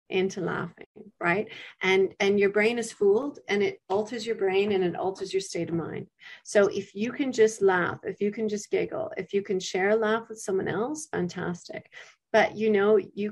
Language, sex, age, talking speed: English, female, 30-49, 205 wpm